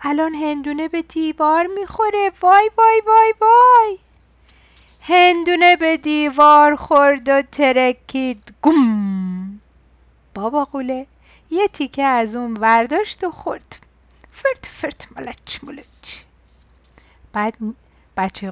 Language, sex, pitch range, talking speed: Persian, female, 210-320 Hz, 100 wpm